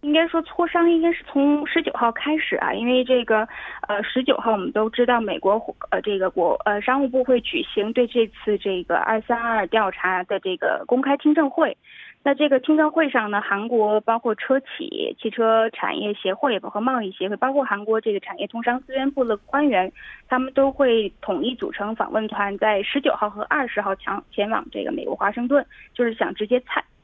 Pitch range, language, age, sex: 205-275 Hz, Korean, 20-39, female